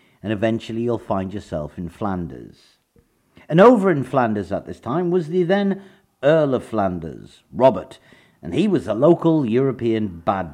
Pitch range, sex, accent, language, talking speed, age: 95-150 Hz, male, British, English, 160 wpm, 50-69